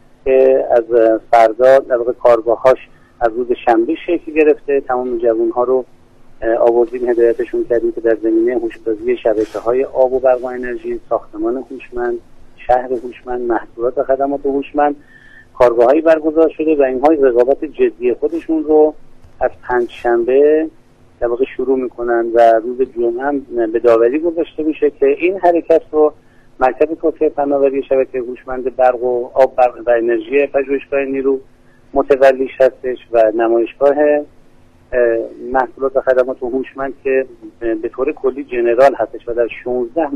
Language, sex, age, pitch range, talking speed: Persian, male, 50-69, 120-155 Hz, 135 wpm